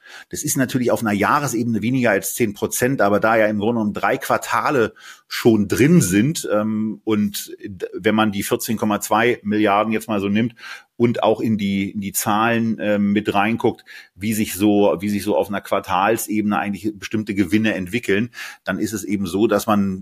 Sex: male